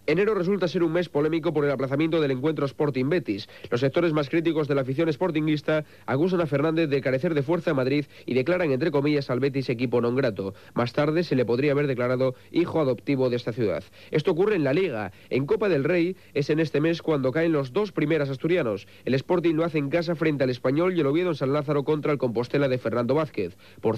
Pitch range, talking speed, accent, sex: 130-165 Hz, 230 wpm, Spanish, male